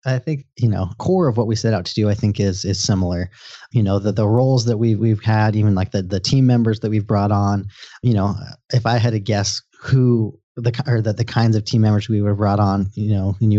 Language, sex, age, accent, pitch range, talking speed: English, male, 30-49, American, 100-120 Hz, 265 wpm